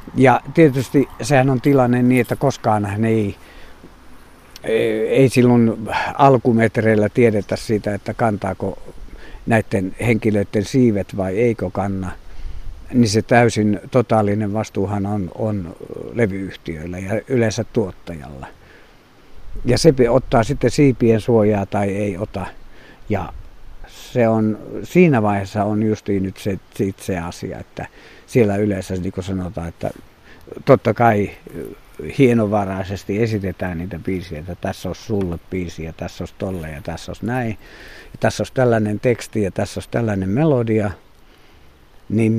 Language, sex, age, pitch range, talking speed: Finnish, male, 50-69, 95-115 Hz, 125 wpm